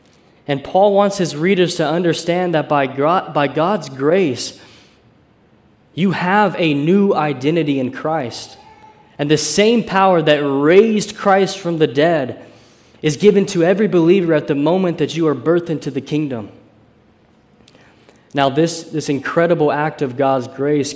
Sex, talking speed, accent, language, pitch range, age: male, 150 wpm, American, English, 135-170 Hz, 20-39